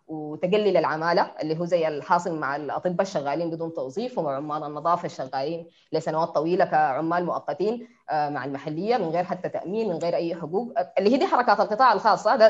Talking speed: 170 wpm